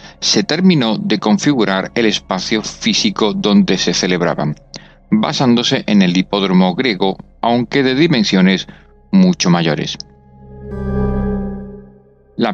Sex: male